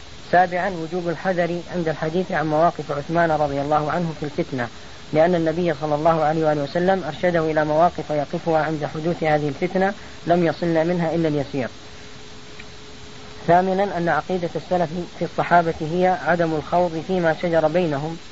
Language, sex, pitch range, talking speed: Arabic, female, 155-175 Hz, 145 wpm